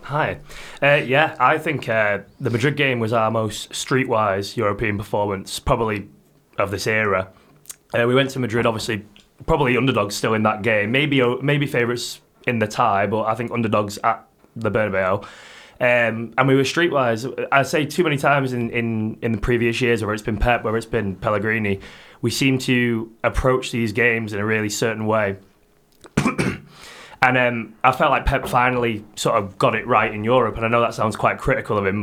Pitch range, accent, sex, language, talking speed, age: 105-125 Hz, British, male, English, 195 wpm, 20-39